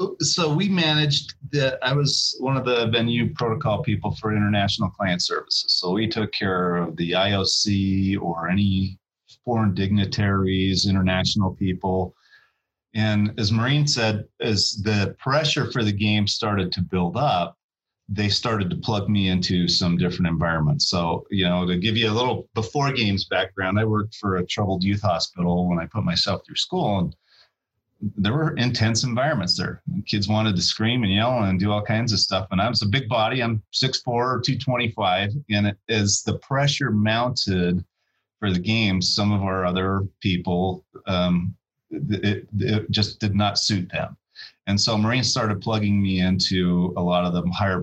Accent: American